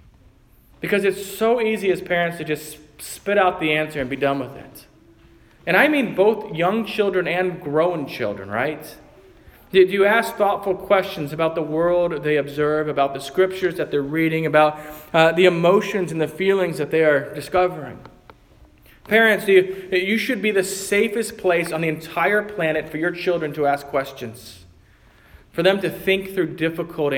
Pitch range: 145-190 Hz